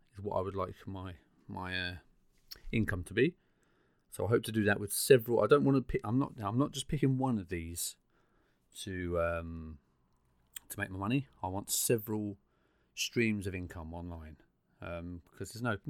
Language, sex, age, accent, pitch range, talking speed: English, male, 30-49, British, 90-115 Hz, 185 wpm